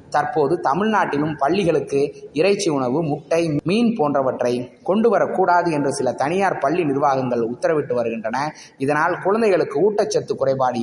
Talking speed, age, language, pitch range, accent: 115 wpm, 20-39, Tamil, 130-175 Hz, native